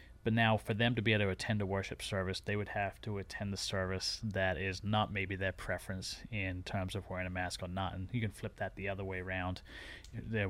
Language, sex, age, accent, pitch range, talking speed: English, male, 30-49, American, 95-110 Hz, 245 wpm